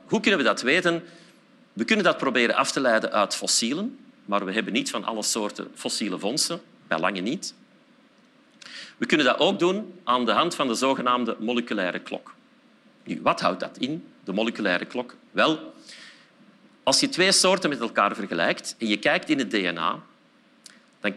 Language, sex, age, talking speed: Dutch, male, 40-59, 175 wpm